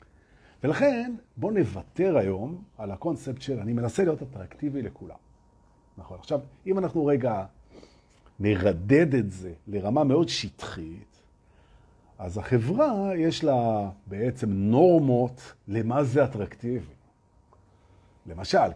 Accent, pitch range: native, 95-140 Hz